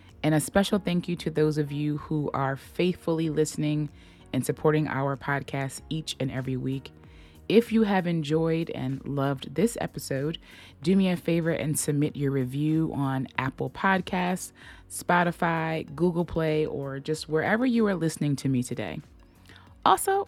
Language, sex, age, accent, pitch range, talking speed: English, female, 20-39, American, 140-190 Hz, 155 wpm